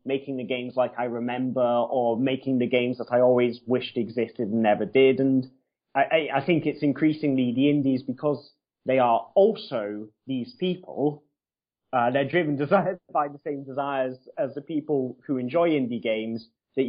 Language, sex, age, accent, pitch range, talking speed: English, male, 20-39, British, 110-130 Hz, 165 wpm